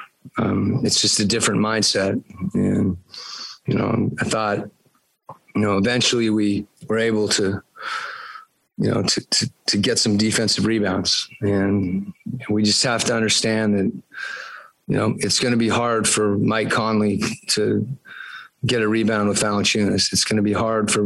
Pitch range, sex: 100-110 Hz, male